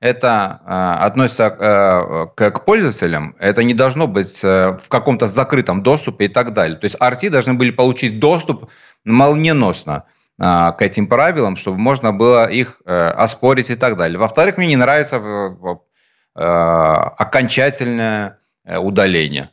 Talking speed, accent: 125 wpm, native